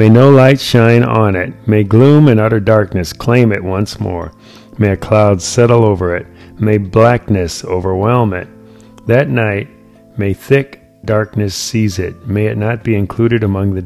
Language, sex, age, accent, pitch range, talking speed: English, male, 50-69, American, 95-115 Hz, 170 wpm